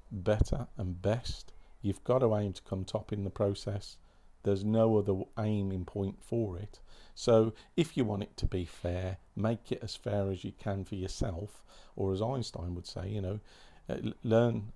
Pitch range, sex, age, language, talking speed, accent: 95-115 Hz, male, 40-59, English, 185 wpm, British